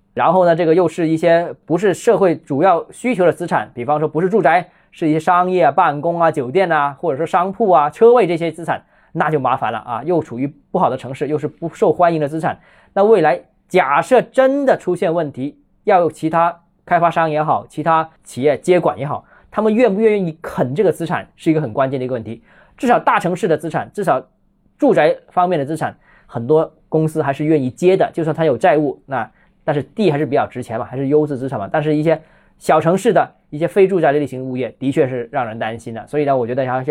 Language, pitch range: Chinese, 145-180 Hz